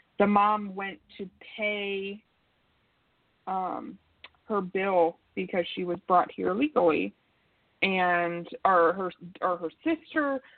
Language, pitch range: English, 175-210 Hz